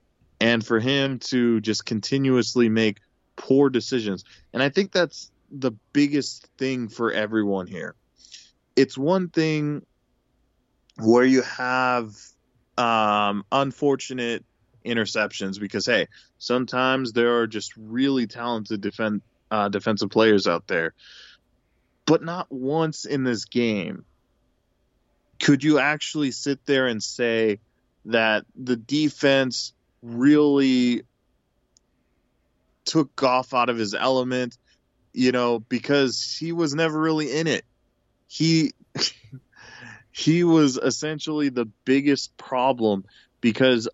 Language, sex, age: English, male, 20-39